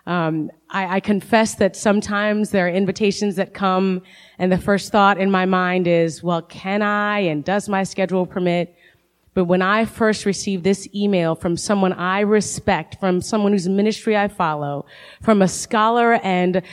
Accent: American